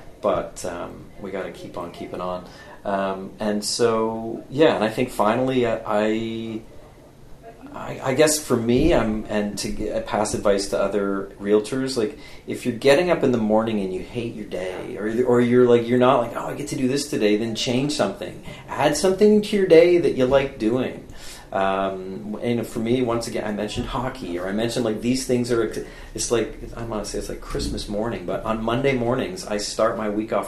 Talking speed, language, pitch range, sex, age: 210 wpm, English, 105-130 Hz, male, 40-59